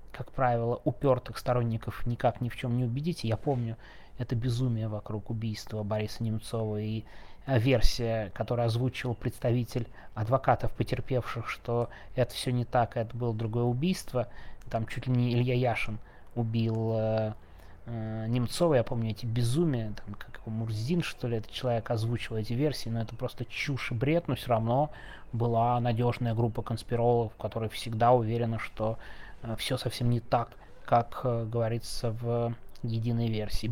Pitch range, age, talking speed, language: 110-125 Hz, 20-39, 150 wpm, Russian